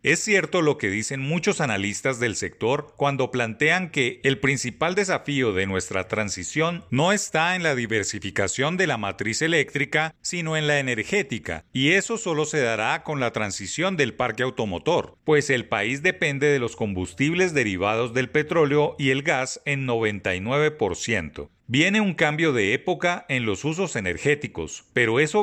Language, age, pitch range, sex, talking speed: Spanish, 40-59, 110-155 Hz, male, 160 wpm